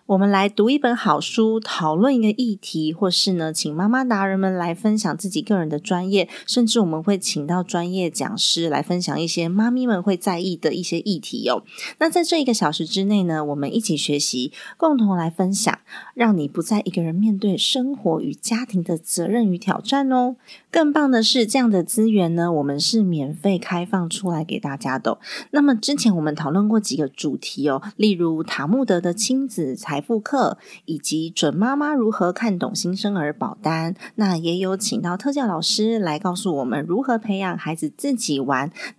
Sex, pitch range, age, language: female, 165-225 Hz, 30-49, Chinese